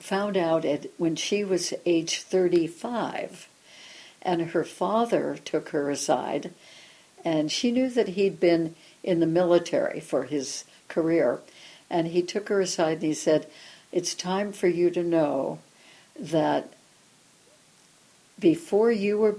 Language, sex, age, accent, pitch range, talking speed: English, female, 60-79, American, 155-185 Hz, 135 wpm